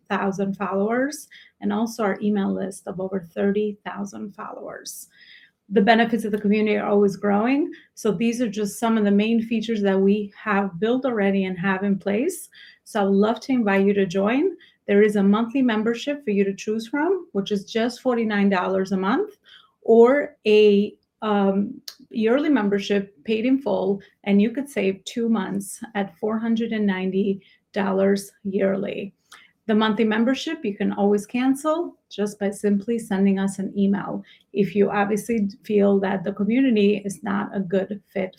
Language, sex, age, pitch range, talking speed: English, female, 30-49, 200-230 Hz, 165 wpm